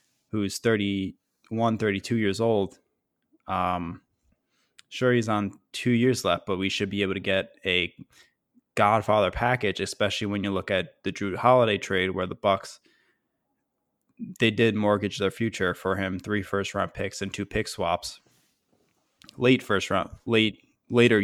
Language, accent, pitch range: English, American, 95-110 Hz